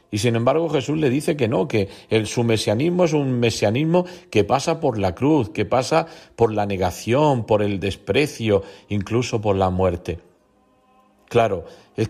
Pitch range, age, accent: 95-120 Hz, 50-69, Spanish